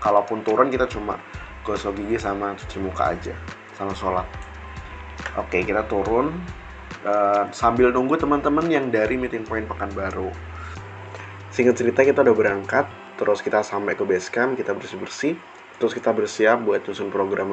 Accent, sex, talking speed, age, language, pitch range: native, male, 155 wpm, 20-39, Indonesian, 100-125 Hz